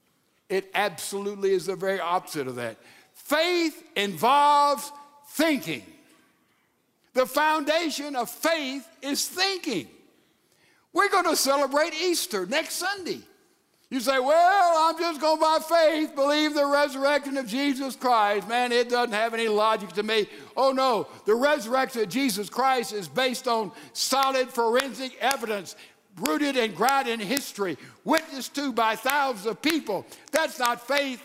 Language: English